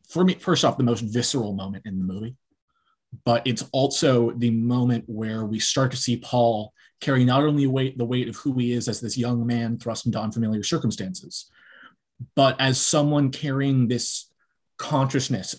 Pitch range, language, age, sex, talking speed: 110-130 Hz, English, 20-39, male, 175 wpm